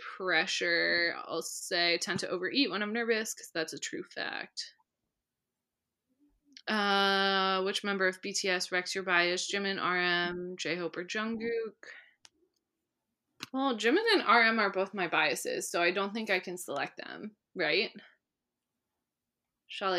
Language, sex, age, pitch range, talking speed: English, female, 20-39, 185-265 Hz, 140 wpm